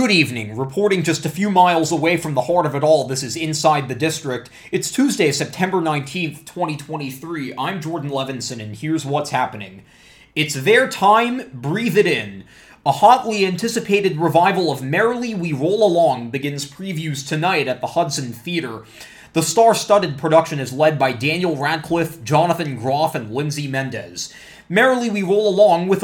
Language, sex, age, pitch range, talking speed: English, male, 20-39, 140-185 Hz, 165 wpm